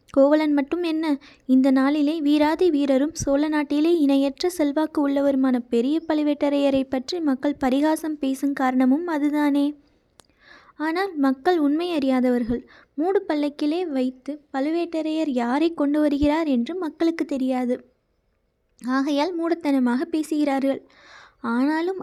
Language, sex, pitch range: Tamil, female, 270-325 Hz